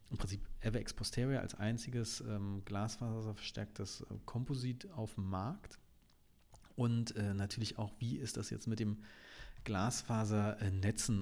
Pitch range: 110-130 Hz